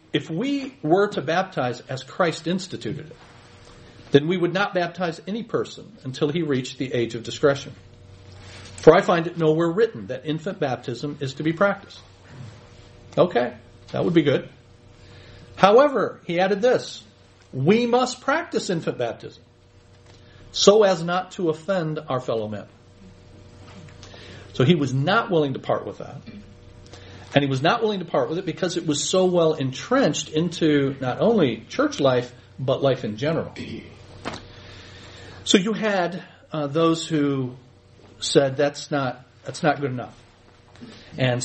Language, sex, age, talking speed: English, male, 50-69, 150 wpm